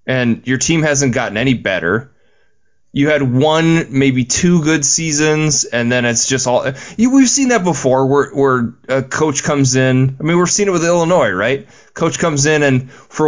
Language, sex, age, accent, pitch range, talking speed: English, male, 20-39, American, 125-160 Hz, 190 wpm